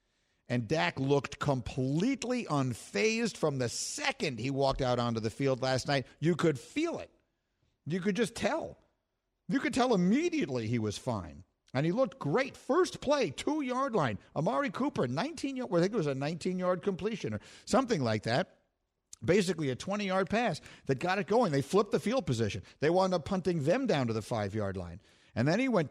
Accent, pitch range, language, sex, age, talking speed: American, 120-185 Hz, English, male, 50-69, 185 wpm